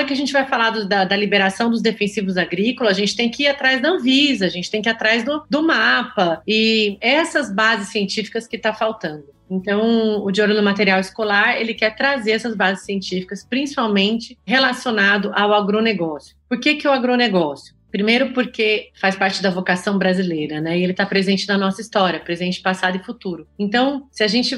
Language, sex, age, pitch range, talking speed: Portuguese, female, 30-49, 185-230 Hz, 195 wpm